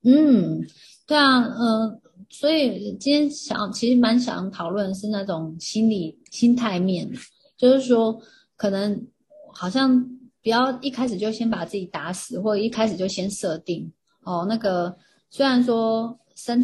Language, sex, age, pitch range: Chinese, female, 30-49, 185-235 Hz